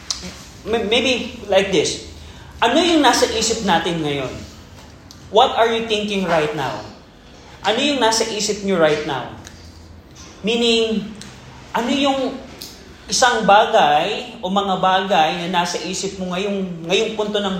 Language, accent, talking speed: Filipino, native, 130 wpm